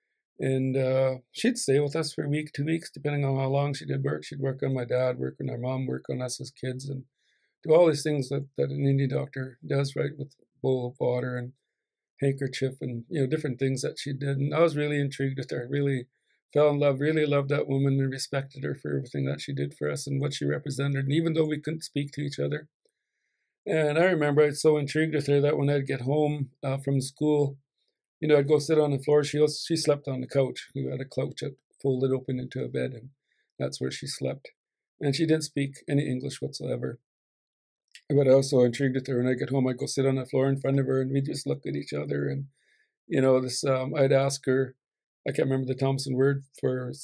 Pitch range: 130-150 Hz